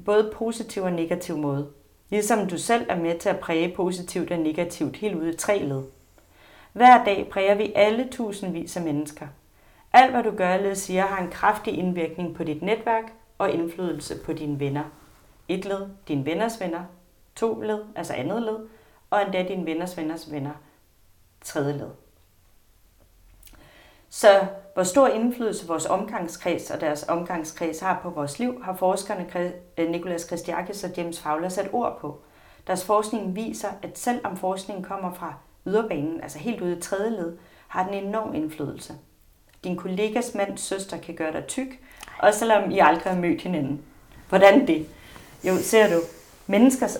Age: 30-49